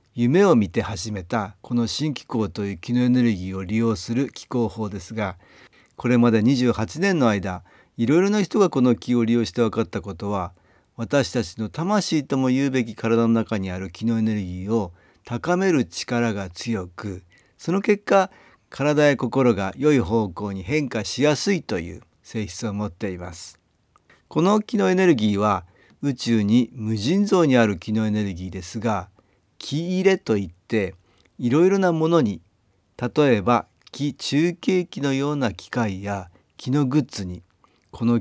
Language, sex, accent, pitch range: Japanese, male, native, 100-145 Hz